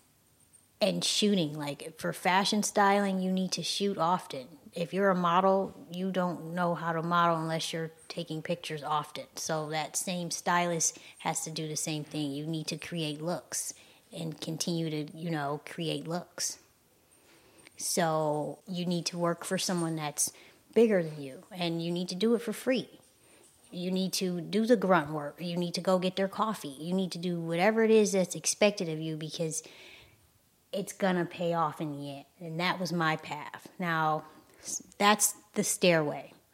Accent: American